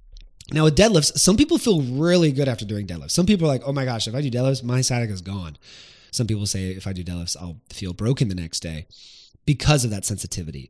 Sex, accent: male, American